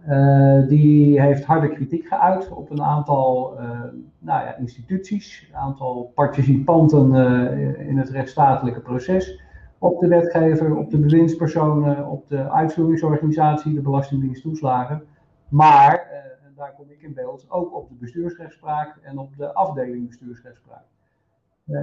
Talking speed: 130 wpm